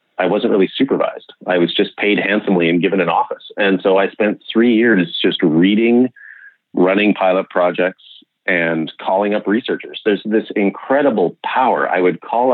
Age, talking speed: 30-49, 170 wpm